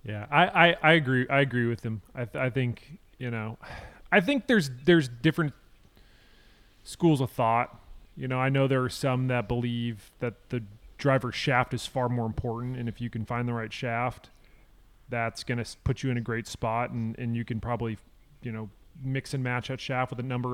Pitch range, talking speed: 120-145 Hz, 210 wpm